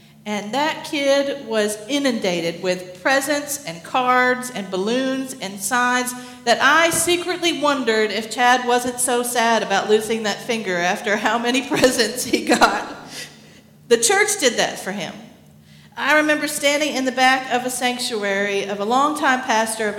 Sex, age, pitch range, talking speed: female, 40-59, 195-255 Hz, 155 wpm